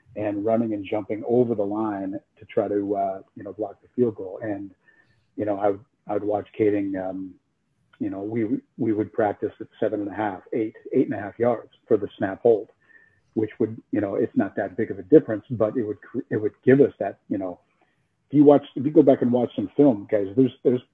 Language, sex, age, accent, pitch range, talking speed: English, male, 50-69, American, 105-135 Hz, 245 wpm